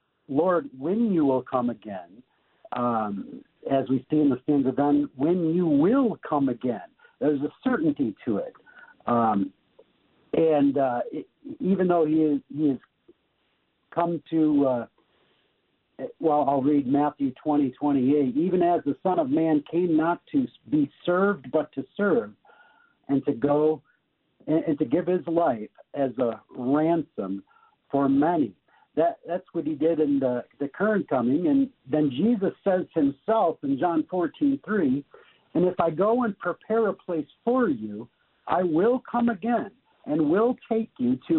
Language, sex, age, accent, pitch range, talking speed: English, male, 60-79, American, 140-200 Hz, 160 wpm